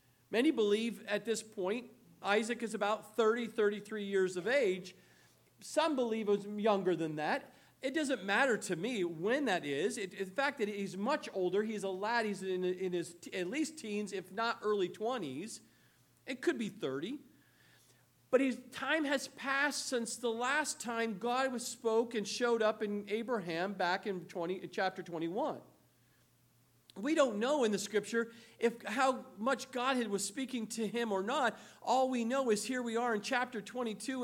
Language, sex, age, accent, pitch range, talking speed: English, male, 50-69, American, 200-255 Hz, 175 wpm